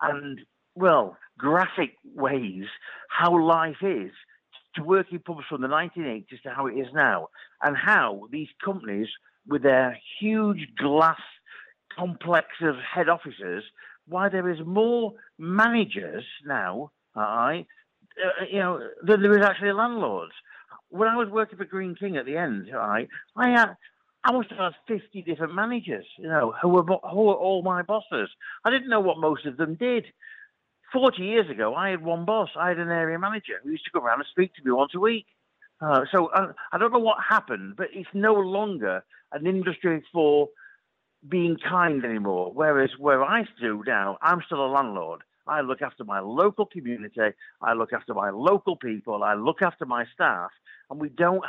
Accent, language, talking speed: British, English, 175 wpm